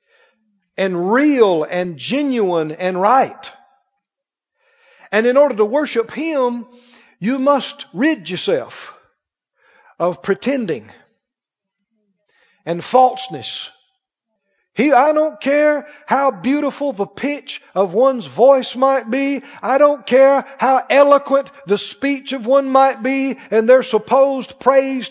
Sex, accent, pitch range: male, American, 195-270 Hz